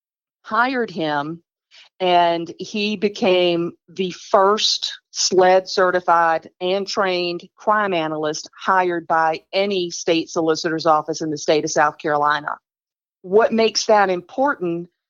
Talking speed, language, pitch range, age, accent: 115 wpm, English, 170-200 Hz, 40-59, American